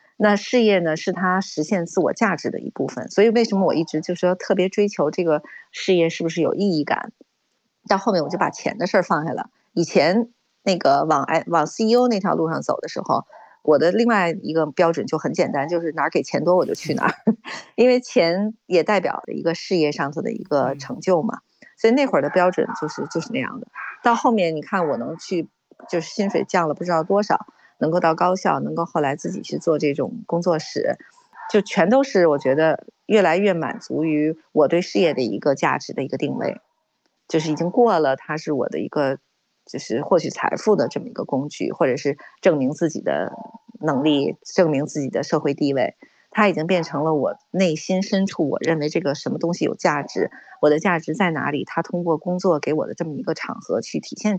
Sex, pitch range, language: female, 160-220 Hz, Chinese